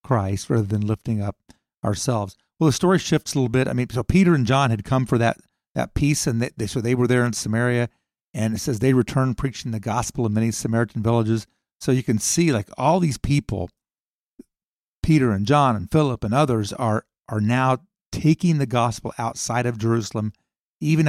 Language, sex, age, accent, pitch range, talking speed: English, male, 50-69, American, 110-130 Hz, 200 wpm